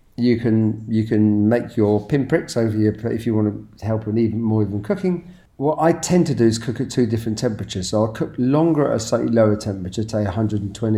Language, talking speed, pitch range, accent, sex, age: English, 225 wpm, 105-125 Hz, British, male, 40-59